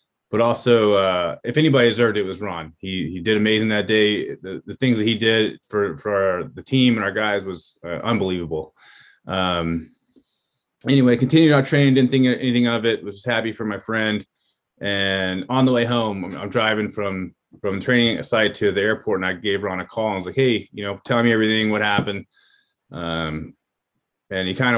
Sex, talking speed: male, 210 wpm